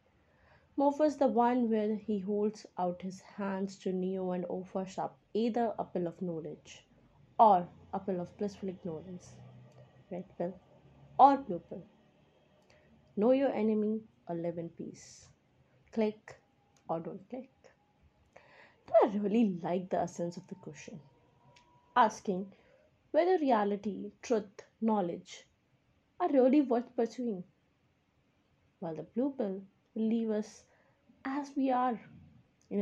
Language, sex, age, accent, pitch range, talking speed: English, female, 20-39, Indian, 175-220 Hz, 125 wpm